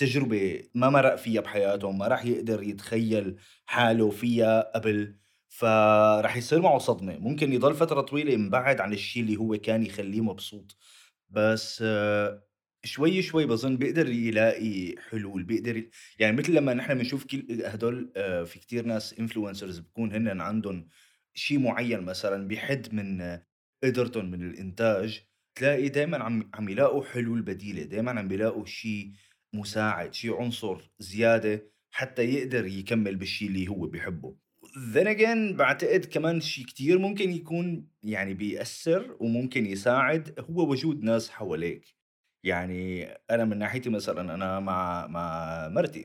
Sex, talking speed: male, 140 wpm